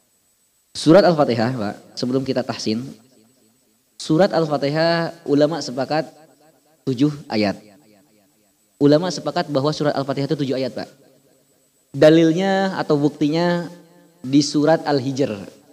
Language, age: Indonesian, 20-39